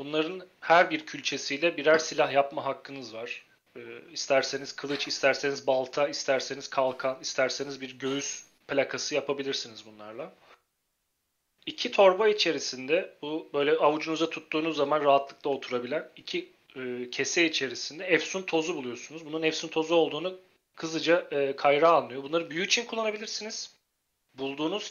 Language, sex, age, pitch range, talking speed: Turkish, male, 40-59, 135-170 Hz, 125 wpm